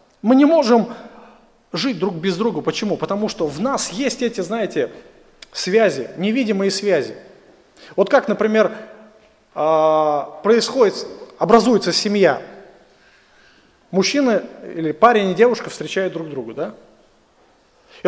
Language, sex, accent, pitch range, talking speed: Russian, male, native, 205-275 Hz, 115 wpm